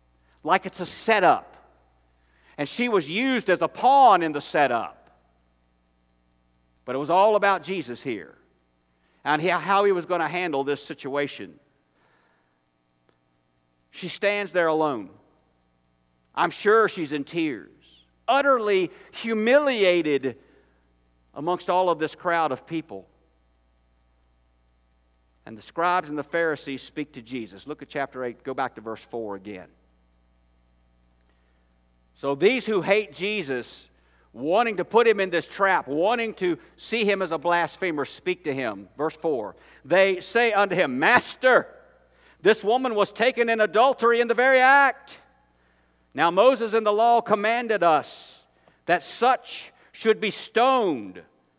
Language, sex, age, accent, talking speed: English, male, 50-69, American, 135 wpm